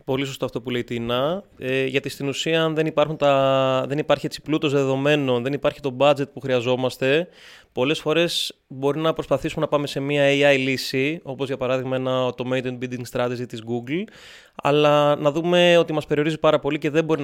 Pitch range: 130-155 Hz